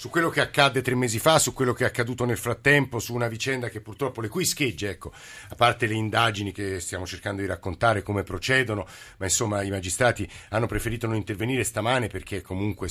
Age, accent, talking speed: 50-69, native, 210 wpm